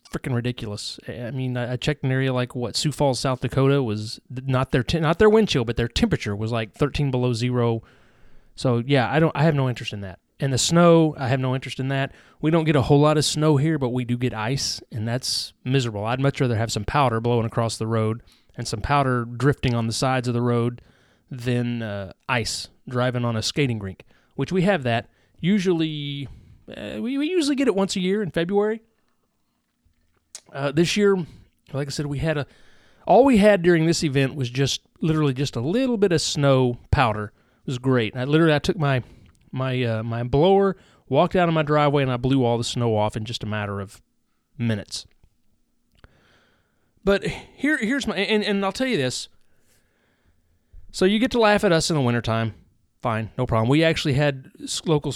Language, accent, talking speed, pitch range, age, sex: English, American, 210 wpm, 120-155 Hz, 30-49, male